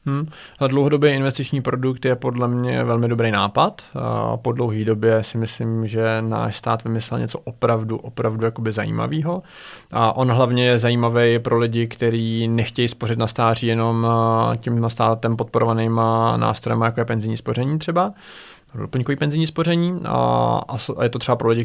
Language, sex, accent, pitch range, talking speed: Czech, male, native, 115-135 Hz, 155 wpm